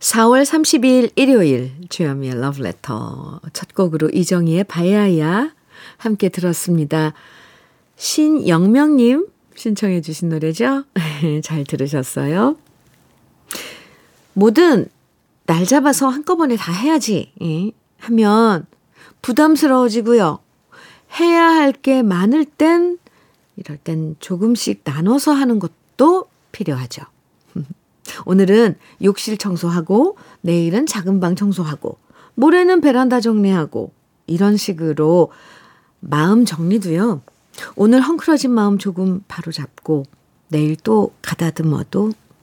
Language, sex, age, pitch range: Korean, female, 50-69, 165-250 Hz